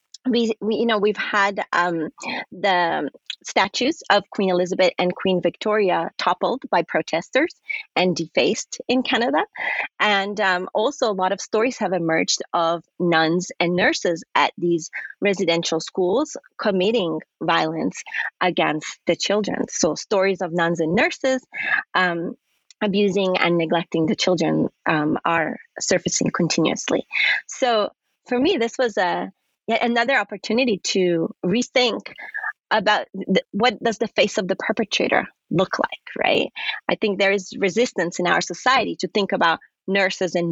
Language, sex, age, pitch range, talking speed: English, female, 30-49, 170-220 Hz, 140 wpm